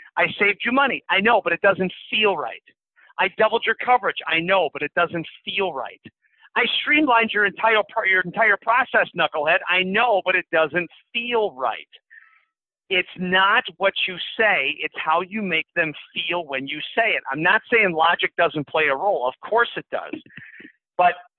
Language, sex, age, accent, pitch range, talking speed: English, male, 50-69, American, 155-215 Hz, 180 wpm